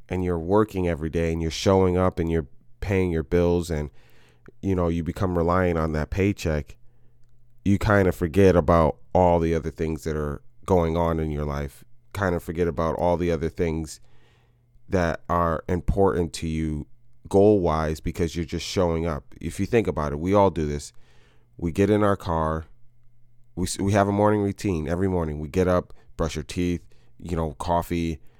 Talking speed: 190 wpm